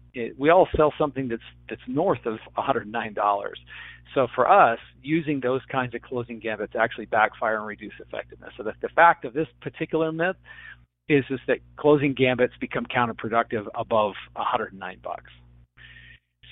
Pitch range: 105-135 Hz